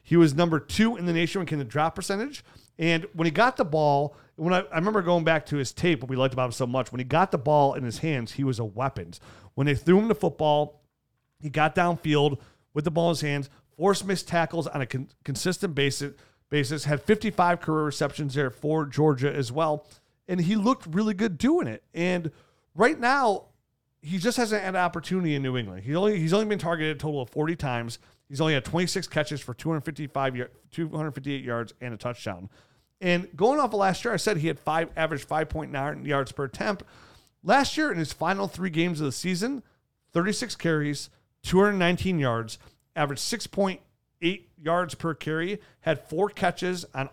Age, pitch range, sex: 40-59, 140-180 Hz, male